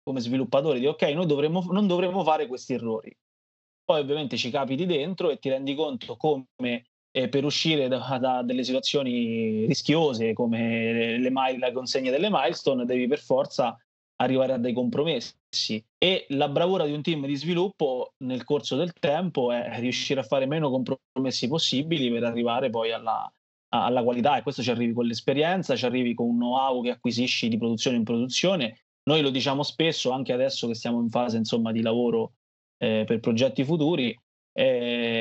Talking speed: 175 wpm